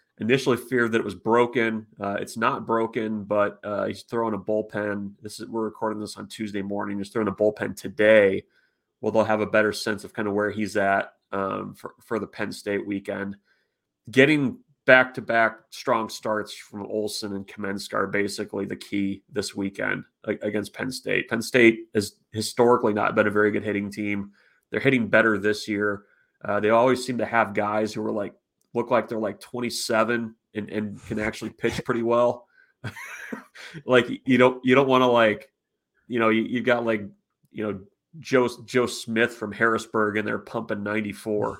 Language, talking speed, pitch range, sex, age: English, 185 wpm, 105-115 Hz, male, 30-49